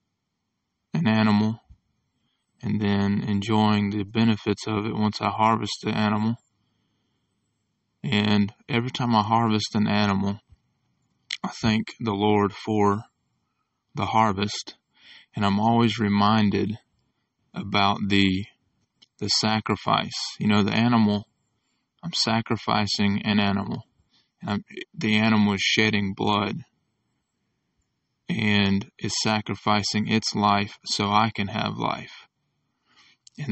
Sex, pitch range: male, 100-110 Hz